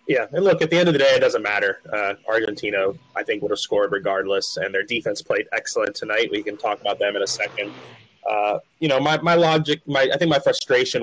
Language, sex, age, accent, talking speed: English, male, 20-39, American, 245 wpm